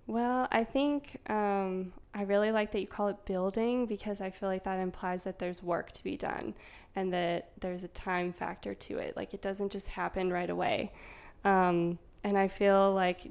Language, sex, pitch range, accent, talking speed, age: English, female, 180-200 Hz, American, 200 wpm, 20-39